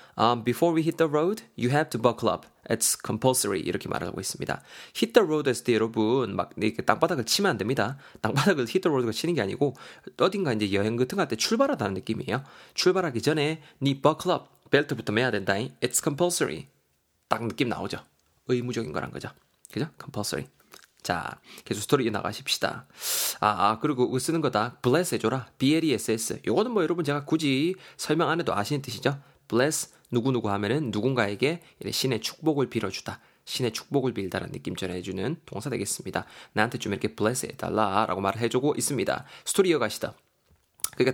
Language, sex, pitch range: Korean, male, 110-155 Hz